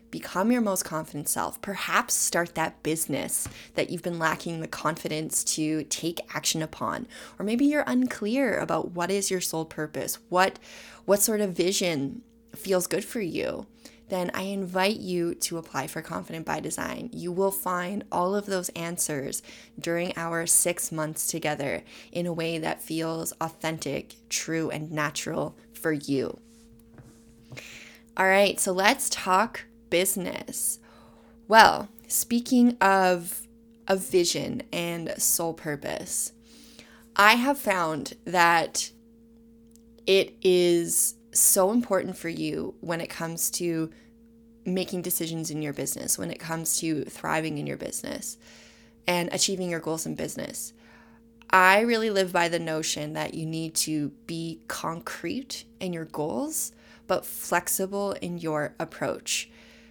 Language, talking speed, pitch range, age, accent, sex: English, 140 wpm, 160-225 Hz, 20-39, American, female